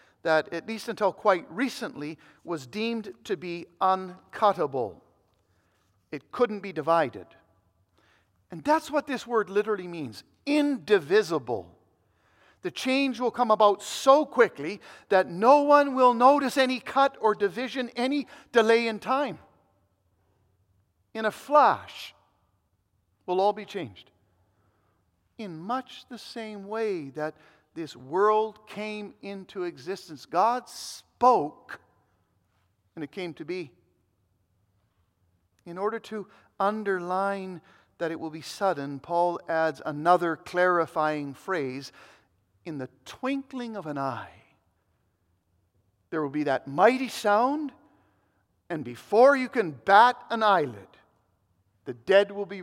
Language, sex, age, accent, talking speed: English, male, 50-69, American, 120 wpm